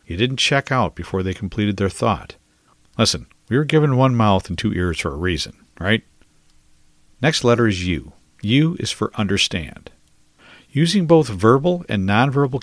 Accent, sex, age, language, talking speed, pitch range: American, male, 50-69, English, 165 wpm, 95-135 Hz